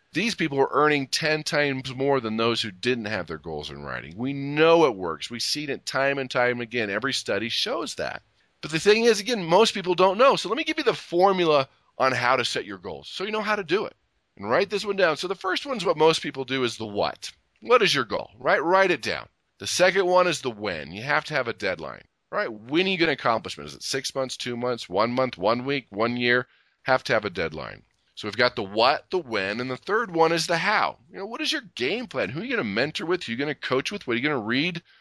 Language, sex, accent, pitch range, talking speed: English, male, American, 125-190 Hz, 280 wpm